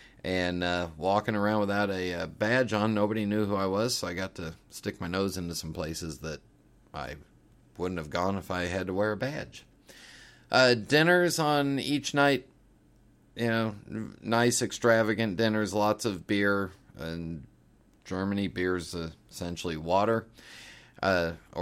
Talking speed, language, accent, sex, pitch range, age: 155 wpm, English, American, male, 95-125 Hz, 40-59